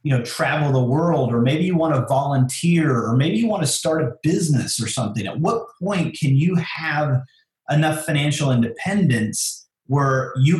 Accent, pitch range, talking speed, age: American, 120-150 Hz, 180 wpm, 30-49